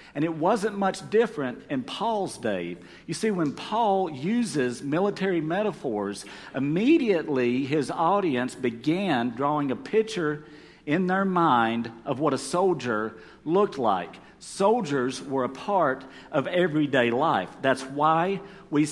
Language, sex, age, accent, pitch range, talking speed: English, male, 50-69, American, 130-195 Hz, 130 wpm